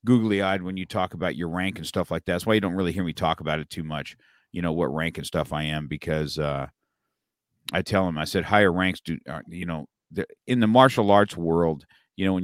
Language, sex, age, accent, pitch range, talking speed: English, male, 50-69, American, 75-95 Hz, 260 wpm